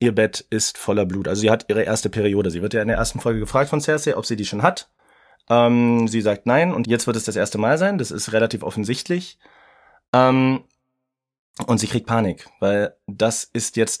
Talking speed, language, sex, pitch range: 220 wpm, German, male, 105-130 Hz